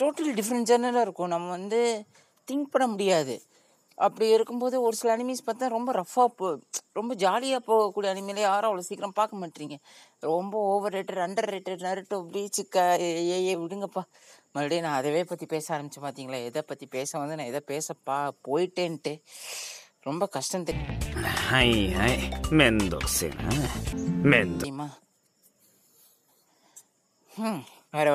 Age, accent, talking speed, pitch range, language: 30-49, native, 115 wpm, 145-195 Hz, Tamil